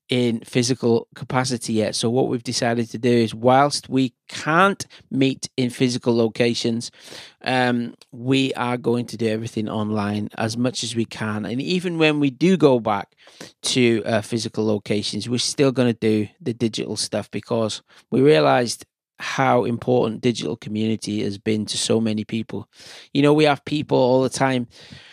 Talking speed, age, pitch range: 170 wpm, 20-39, 115-135 Hz